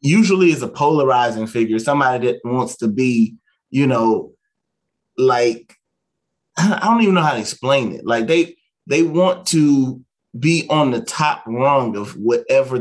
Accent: American